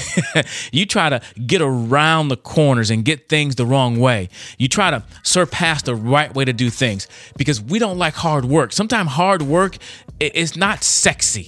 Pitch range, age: 110-155 Hz, 30-49